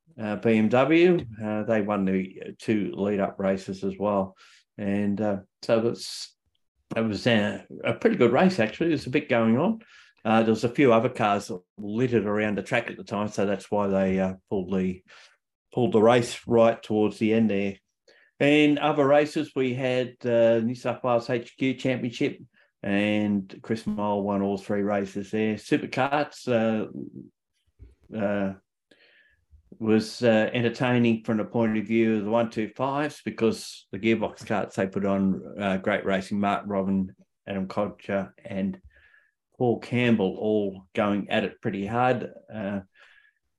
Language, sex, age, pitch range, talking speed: English, male, 50-69, 100-125 Hz, 160 wpm